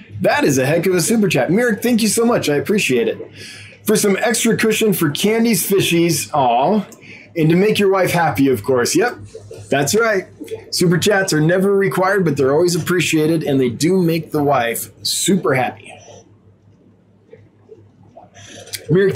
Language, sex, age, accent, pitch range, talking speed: English, male, 20-39, American, 125-200 Hz, 165 wpm